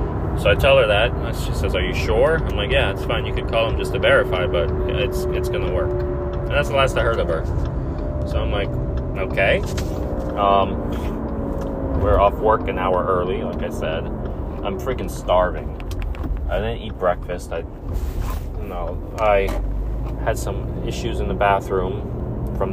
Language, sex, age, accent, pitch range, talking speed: English, male, 30-49, American, 70-90 Hz, 180 wpm